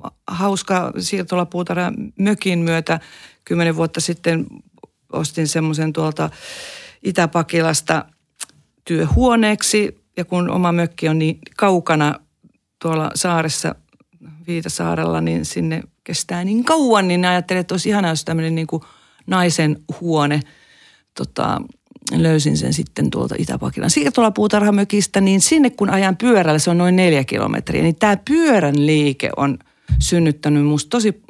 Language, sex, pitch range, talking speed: Finnish, female, 145-185 Hz, 115 wpm